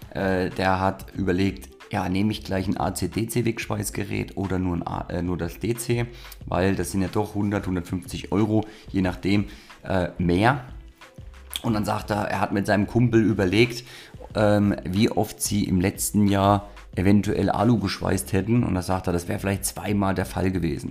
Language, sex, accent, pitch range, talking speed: German, male, German, 90-110 Hz, 165 wpm